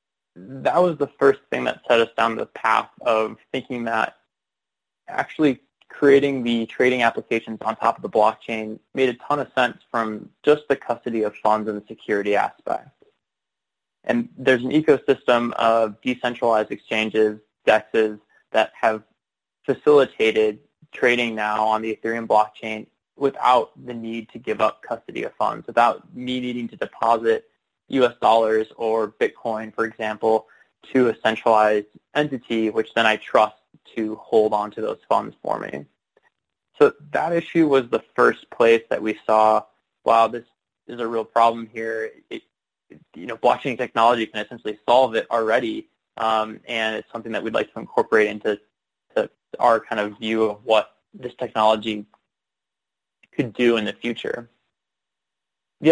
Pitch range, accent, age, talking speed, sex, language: 110-130 Hz, American, 20-39, 155 wpm, male, English